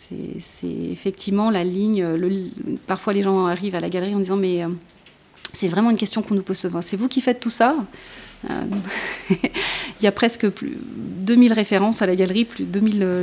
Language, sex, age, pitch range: French, female, 30-49, 185-225 Hz